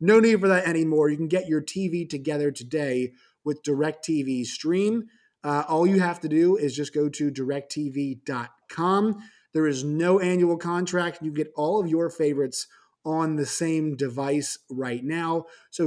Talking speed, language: 170 wpm, English